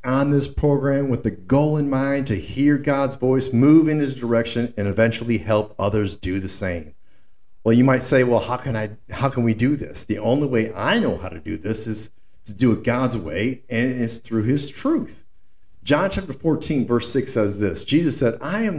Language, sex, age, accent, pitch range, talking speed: English, male, 50-69, American, 105-150 Hz, 215 wpm